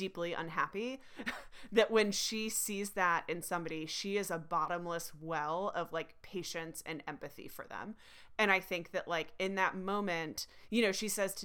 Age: 30-49